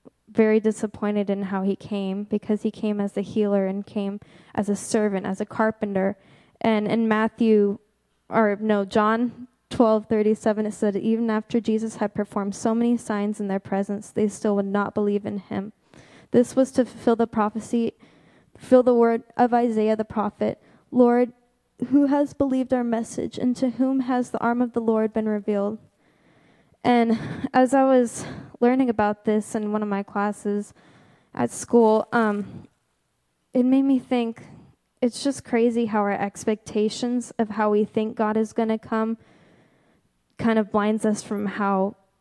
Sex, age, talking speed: female, 10-29, 170 wpm